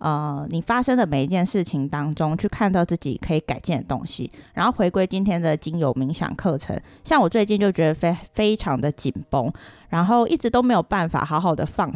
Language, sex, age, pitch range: Chinese, female, 20-39, 155-205 Hz